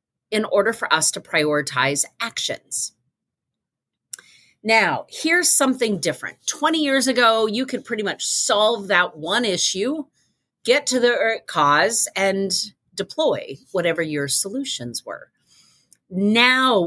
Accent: American